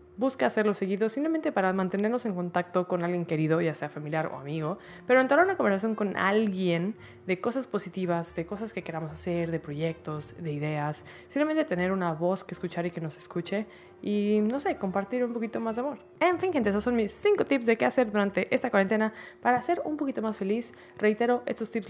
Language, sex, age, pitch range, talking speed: Spanish, female, 20-39, 175-225 Hz, 210 wpm